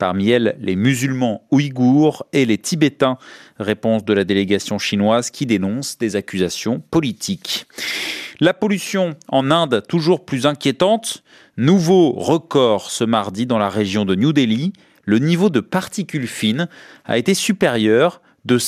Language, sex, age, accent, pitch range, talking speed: French, male, 40-59, French, 110-180 Hz, 140 wpm